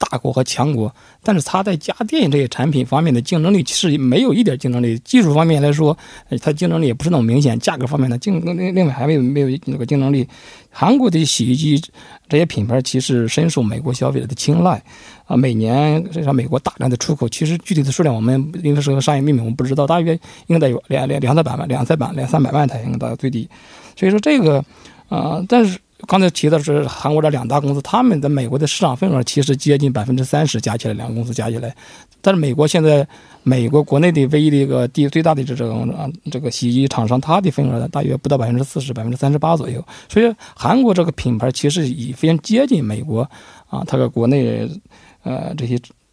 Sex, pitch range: male, 125-165 Hz